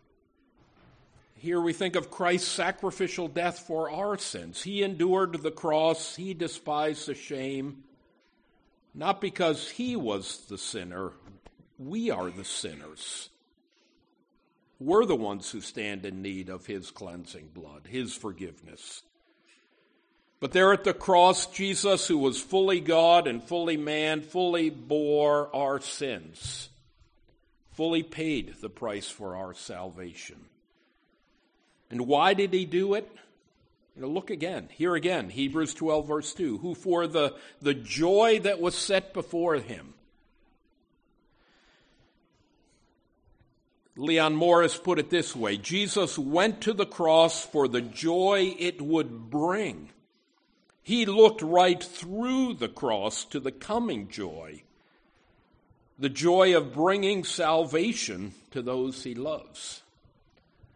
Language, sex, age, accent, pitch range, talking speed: English, male, 50-69, American, 130-185 Hz, 125 wpm